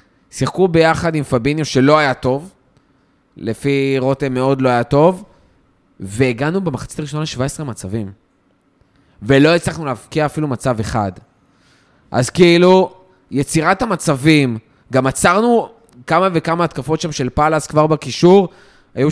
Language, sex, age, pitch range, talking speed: Hebrew, male, 20-39, 135-175 Hz, 120 wpm